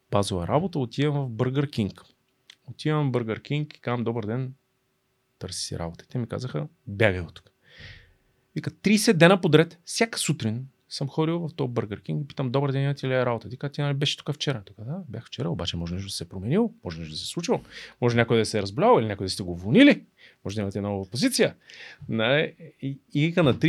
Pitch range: 115-165 Hz